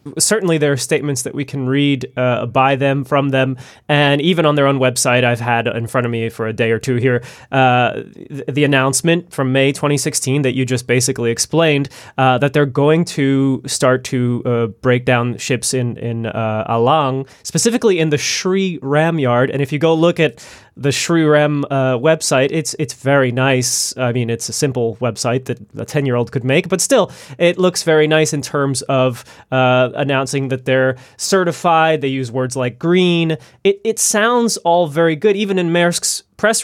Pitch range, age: 130-160 Hz, 20-39